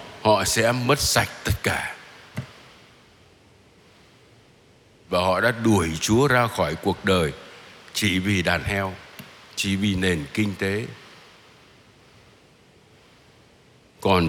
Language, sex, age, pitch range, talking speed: Vietnamese, male, 60-79, 100-165 Hz, 105 wpm